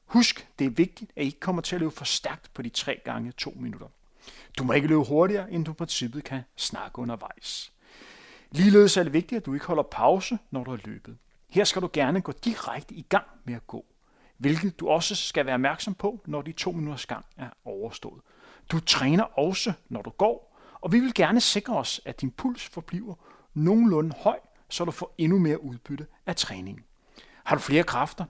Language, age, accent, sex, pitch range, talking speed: Danish, 30-49, native, male, 140-185 Hz, 210 wpm